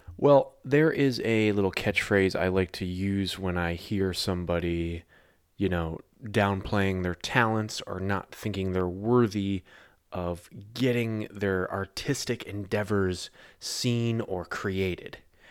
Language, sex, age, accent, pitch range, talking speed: English, male, 20-39, American, 95-110 Hz, 125 wpm